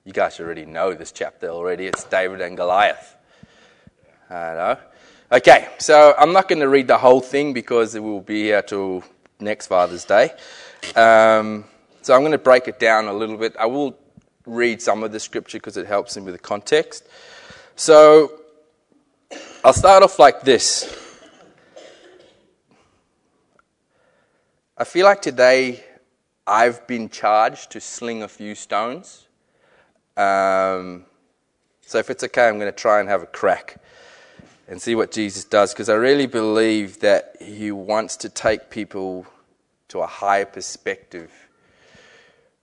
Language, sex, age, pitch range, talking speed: English, male, 20-39, 105-145 Hz, 150 wpm